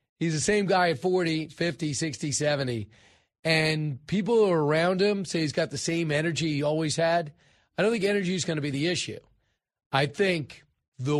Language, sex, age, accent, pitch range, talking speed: English, male, 40-59, American, 135-170 Hz, 200 wpm